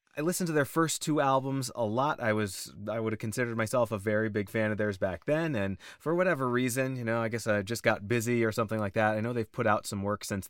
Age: 30-49